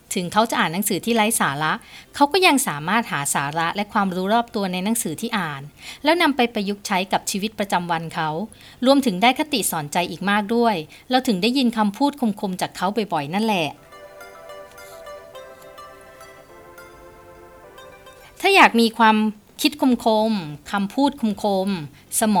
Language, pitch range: Thai, 175-240 Hz